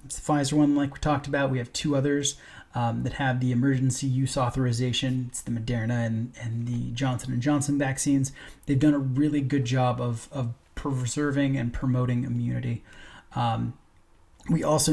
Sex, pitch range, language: male, 120-140 Hz, English